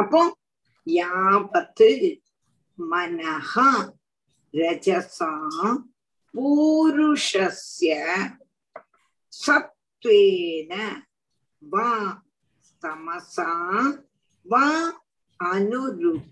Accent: native